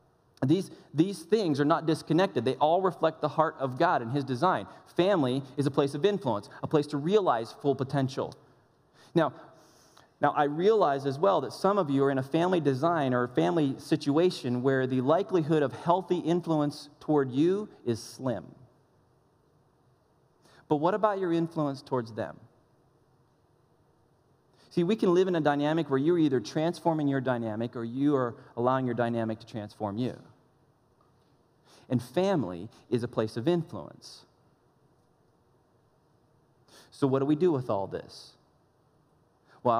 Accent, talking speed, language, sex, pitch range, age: American, 155 wpm, English, male, 130-165 Hz, 30-49